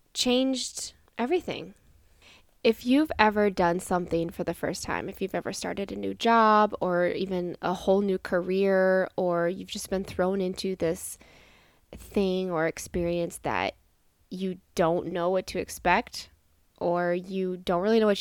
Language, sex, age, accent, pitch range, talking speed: English, female, 20-39, American, 175-205 Hz, 155 wpm